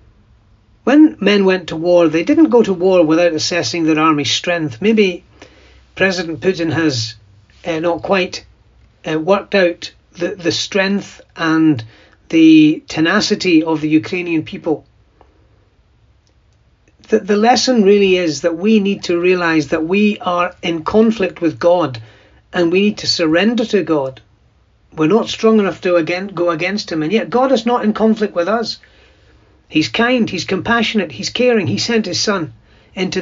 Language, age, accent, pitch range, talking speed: English, 40-59, British, 155-210 Hz, 160 wpm